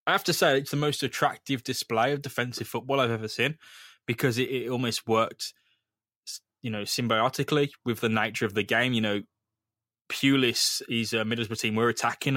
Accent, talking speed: British, 185 wpm